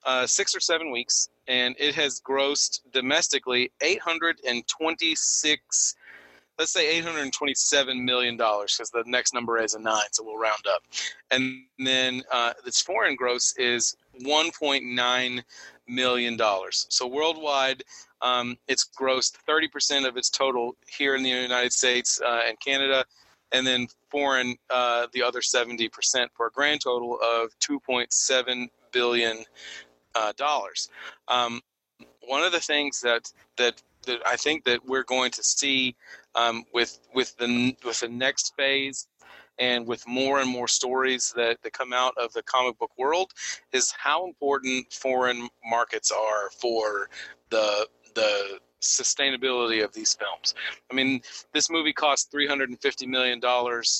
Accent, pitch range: American, 120-135 Hz